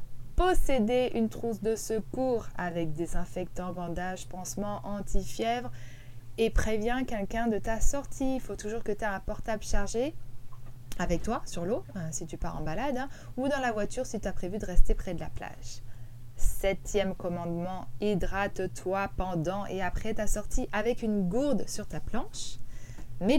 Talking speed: 165 wpm